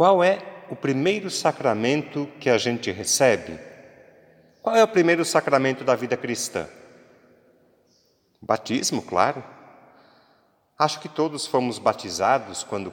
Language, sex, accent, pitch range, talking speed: Portuguese, male, Brazilian, 120-195 Hz, 115 wpm